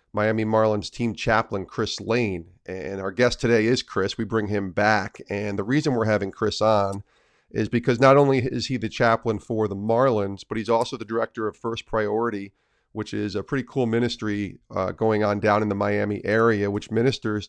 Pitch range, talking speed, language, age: 100-115 Hz, 200 wpm, English, 40-59